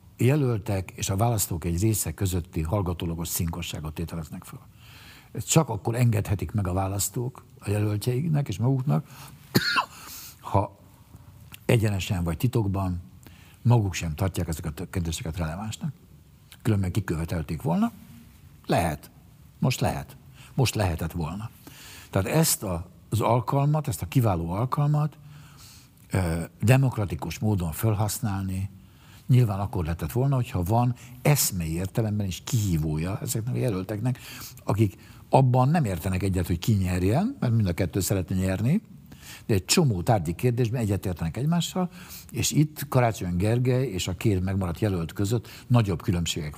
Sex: male